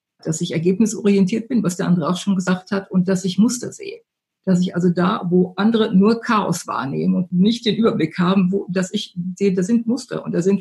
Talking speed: 220 wpm